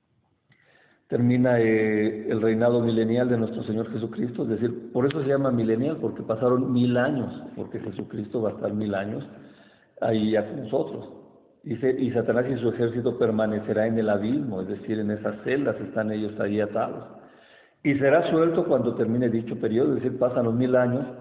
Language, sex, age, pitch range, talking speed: Spanish, male, 50-69, 110-125 Hz, 180 wpm